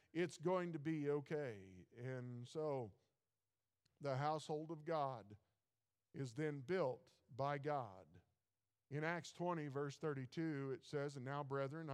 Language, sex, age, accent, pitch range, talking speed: English, male, 50-69, American, 135-165 Hz, 130 wpm